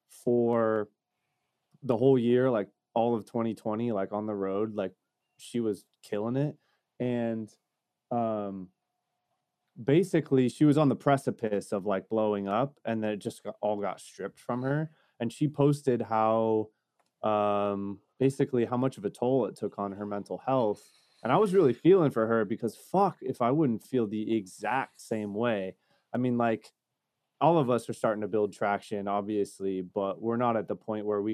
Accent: American